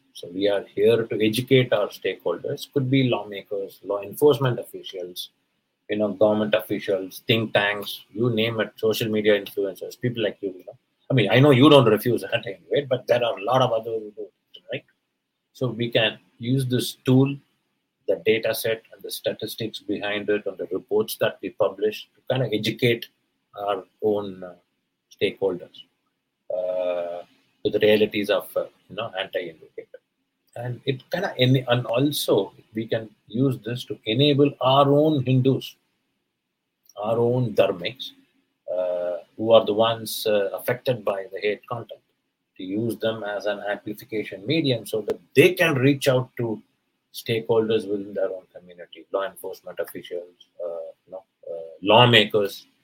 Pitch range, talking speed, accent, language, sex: 105-145 Hz, 155 wpm, Indian, English, male